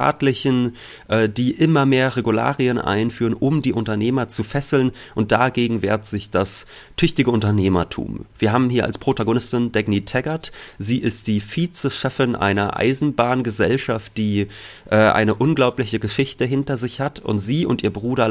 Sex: male